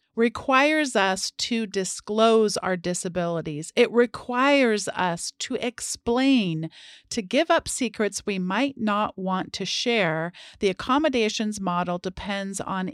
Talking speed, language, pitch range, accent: 120 wpm, English, 190-245 Hz, American